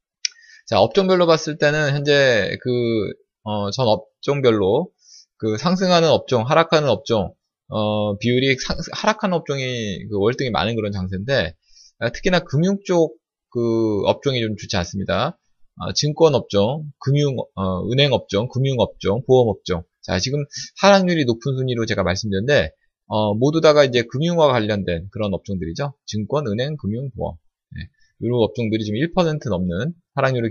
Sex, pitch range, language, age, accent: male, 110-165 Hz, Korean, 20-39, native